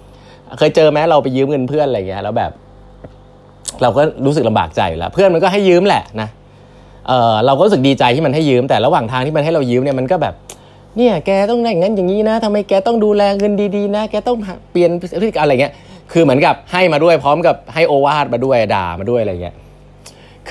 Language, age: Thai, 20-39